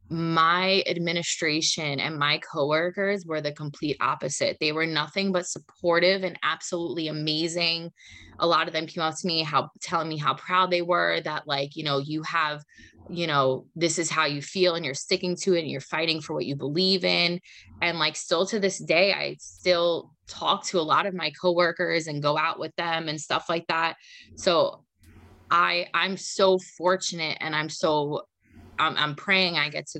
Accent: American